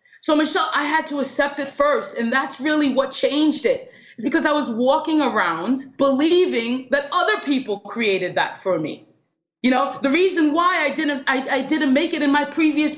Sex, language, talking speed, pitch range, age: female, English, 200 wpm, 220-290 Hz, 30-49